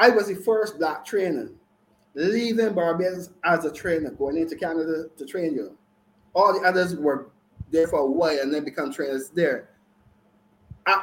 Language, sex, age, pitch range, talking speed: English, male, 30-49, 155-210 Hz, 170 wpm